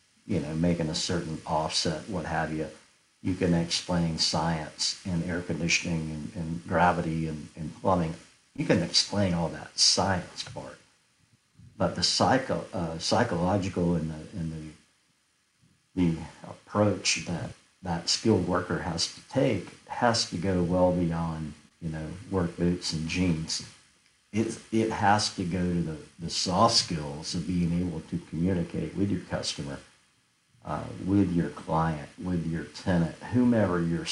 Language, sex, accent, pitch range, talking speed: English, male, American, 80-95 Hz, 150 wpm